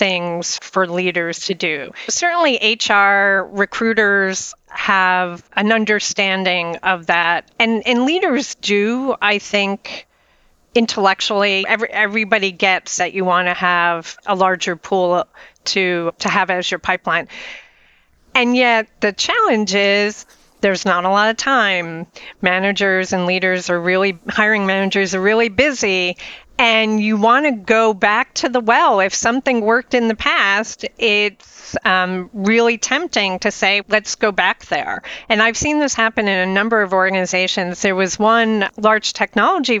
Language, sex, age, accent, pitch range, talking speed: English, female, 40-59, American, 190-225 Hz, 150 wpm